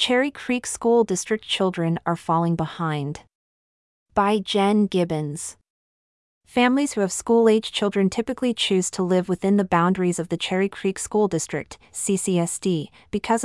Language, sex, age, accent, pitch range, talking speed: English, female, 30-49, American, 170-210 Hz, 140 wpm